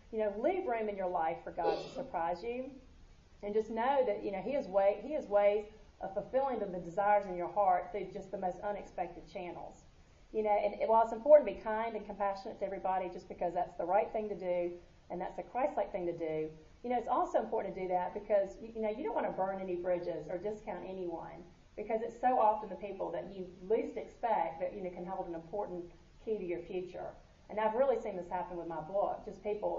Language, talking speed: English, 235 wpm